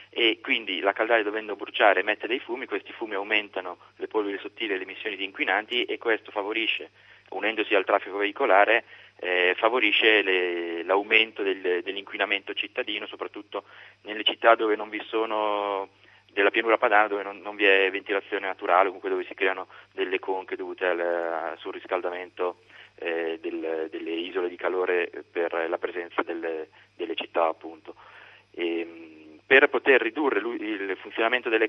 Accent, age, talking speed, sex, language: native, 30-49, 150 wpm, male, Italian